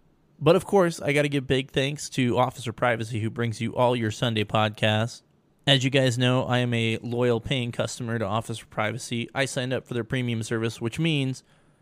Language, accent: English, American